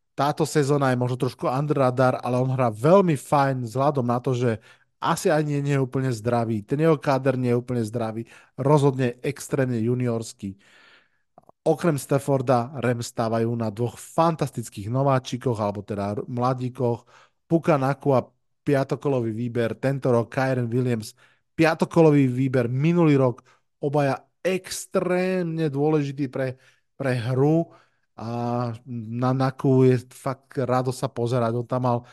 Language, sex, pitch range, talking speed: Slovak, male, 120-145 Hz, 140 wpm